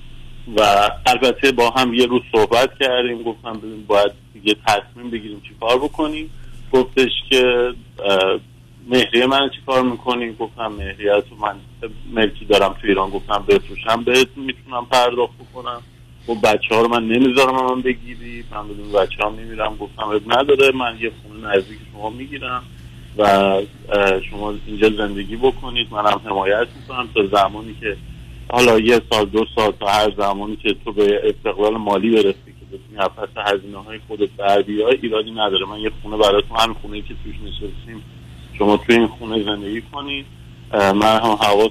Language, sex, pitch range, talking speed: Persian, male, 105-125 Hz, 155 wpm